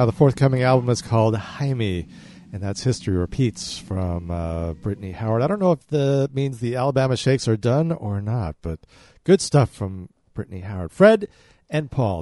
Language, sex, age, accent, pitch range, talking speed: English, male, 40-59, American, 105-135 Hz, 180 wpm